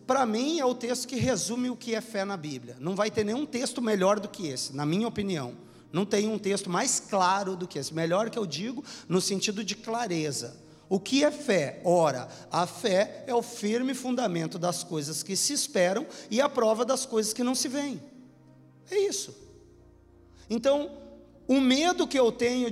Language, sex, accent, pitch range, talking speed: Portuguese, male, Brazilian, 175-240 Hz, 200 wpm